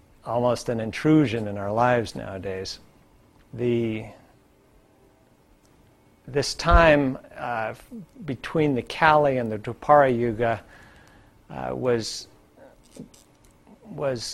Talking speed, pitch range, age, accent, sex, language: 90 wpm, 110-130 Hz, 50-69, American, male, English